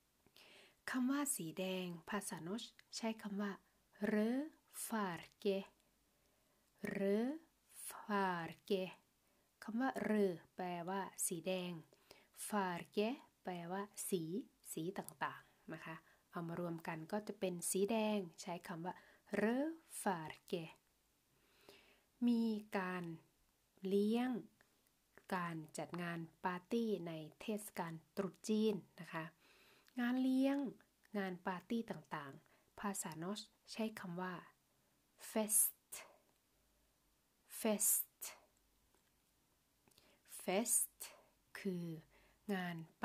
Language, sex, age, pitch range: Thai, female, 20-39, 180-215 Hz